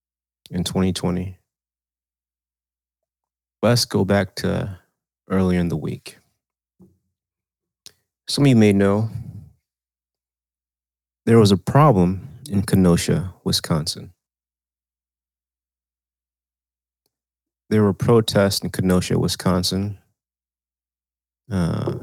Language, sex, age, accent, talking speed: English, male, 30-49, American, 80 wpm